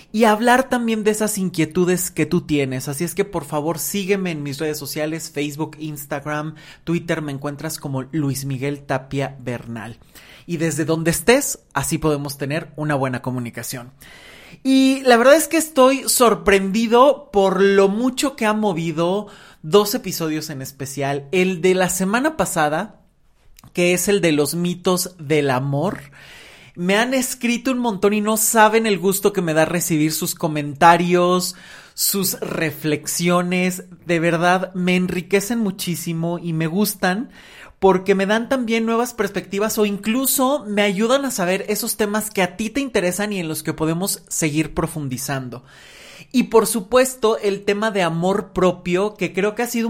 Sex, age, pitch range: male, 30-49, 155-215 Hz